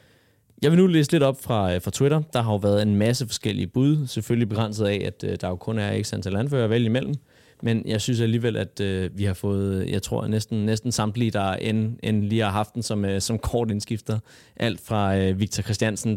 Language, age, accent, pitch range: Danish, 30-49, native, 100-120 Hz